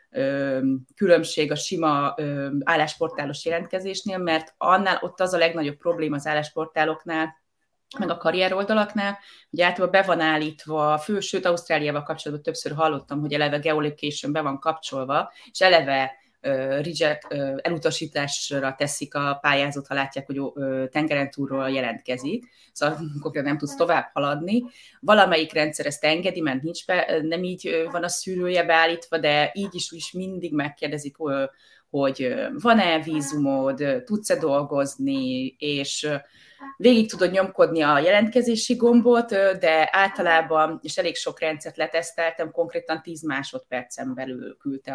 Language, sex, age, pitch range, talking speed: Hungarian, female, 20-39, 145-180 Hz, 125 wpm